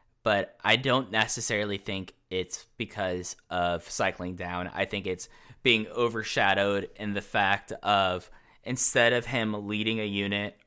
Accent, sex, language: American, male, English